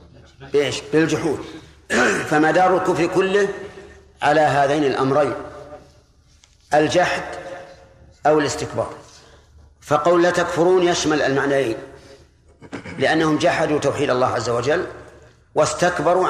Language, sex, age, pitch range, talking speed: Arabic, male, 50-69, 125-165 Hz, 80 wpm